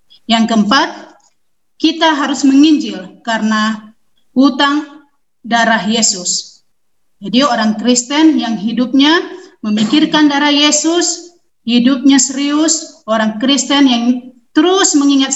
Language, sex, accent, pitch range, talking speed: Indonesian, female, native, 220-290 Hz, 95 wpm